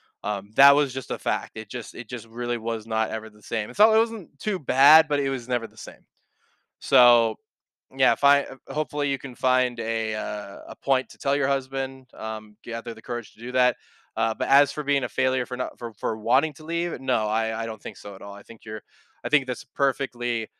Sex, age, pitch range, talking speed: male, 20-39, 115-140 Hz, 235 wpm